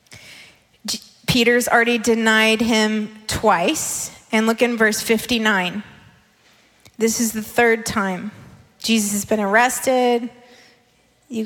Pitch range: 215-255 Hz